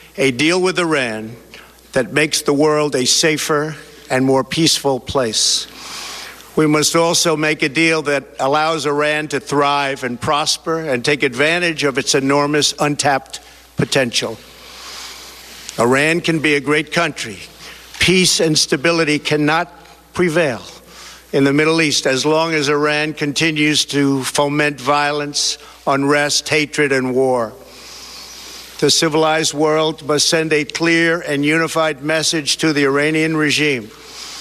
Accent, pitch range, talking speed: American, 140-155 Hz, 135 wpm